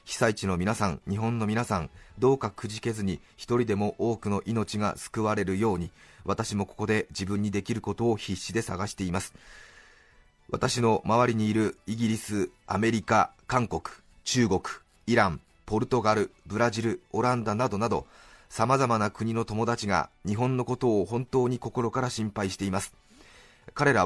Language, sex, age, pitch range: Japanese, male, 30-49, 100-120 Hz